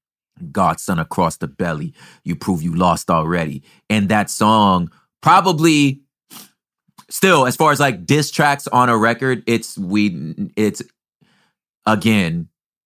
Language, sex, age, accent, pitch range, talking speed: English, male, 30-49, American, 90-125 Hz, 125 wpm